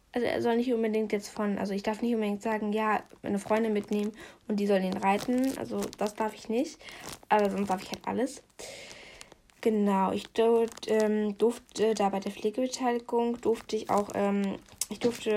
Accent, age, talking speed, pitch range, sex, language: German, 10-29, 190 wpm, 215-250 Hz, female, German